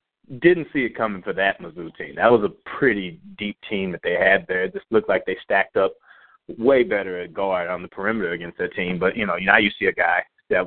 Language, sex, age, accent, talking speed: English, male, 30-49, American, 245 wpm